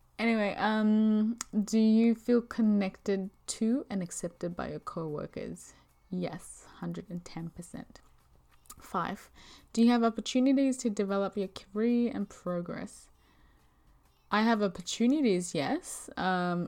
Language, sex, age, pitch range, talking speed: English, female, 20-39, 150-220 Hz, 110 wpm